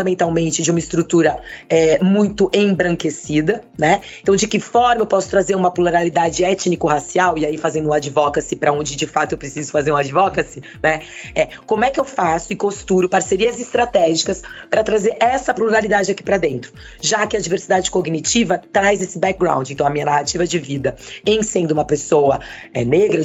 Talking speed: 175 wpm